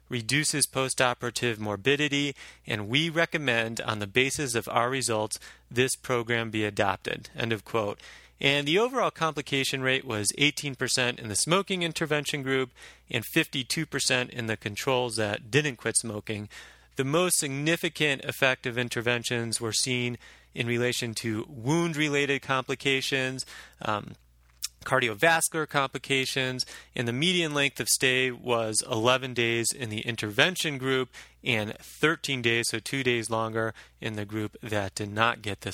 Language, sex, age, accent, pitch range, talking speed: English, male, 30-49, American, 110-135 Hz, 140 wpm